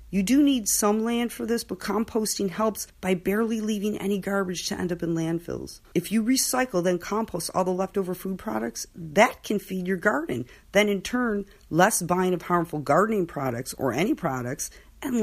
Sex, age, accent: female, 50-69, American